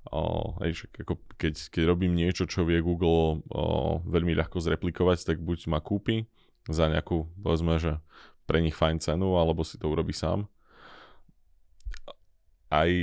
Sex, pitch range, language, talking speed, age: male, 80-95 Hz, Slovak, 145 wpm, 20-39